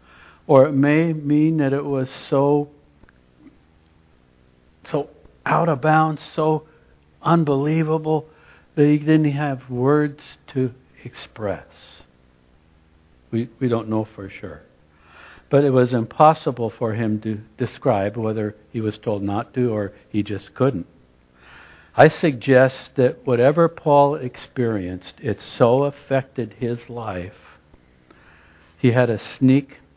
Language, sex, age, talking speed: English, male, 60-79, 120 wpm